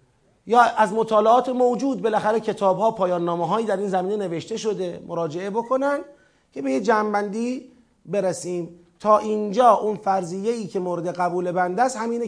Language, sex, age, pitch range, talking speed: Persian, male, 30-49, 175-225 Hz, 150 wpm